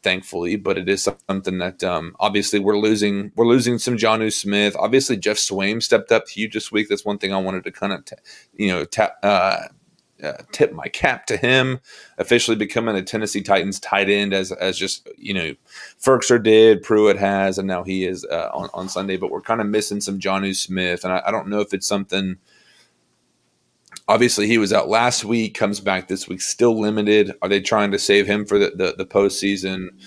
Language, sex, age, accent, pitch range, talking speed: English, male, 30-49, American, 95-110 Hz, 210 wpm